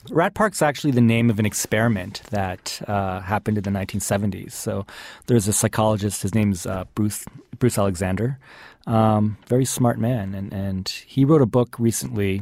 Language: English